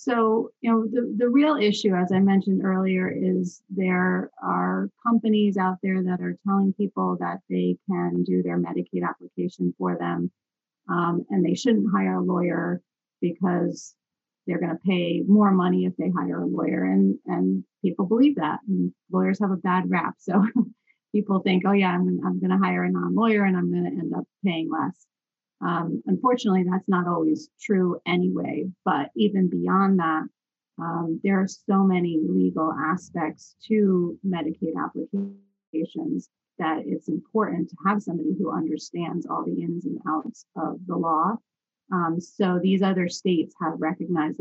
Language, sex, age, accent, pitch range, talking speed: English, female, 30-49, American, 160-195 Hz, 170 wpm